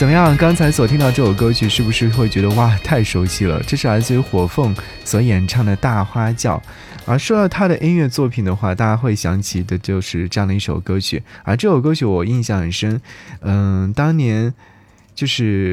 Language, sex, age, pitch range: Chinese, male, 20-39, 95-130 Hz